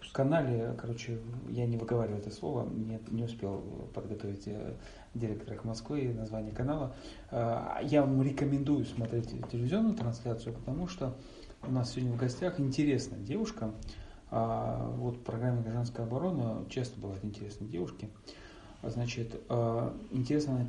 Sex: male